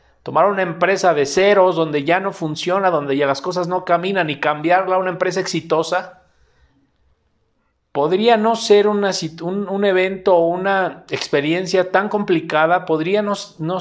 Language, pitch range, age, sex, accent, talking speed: Spanish, 155-195 Hz, 40-59, male, Mexican, 150 wpm